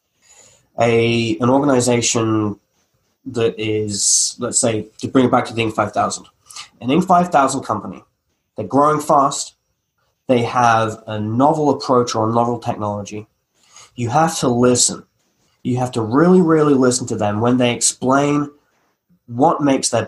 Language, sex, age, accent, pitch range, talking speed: English, male, 20-39, British, 115-140 Hz, 145 wpm